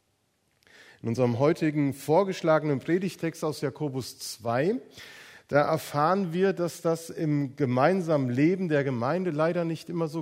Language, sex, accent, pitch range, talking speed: German, male, German, 130-175 Hz, 130 wpm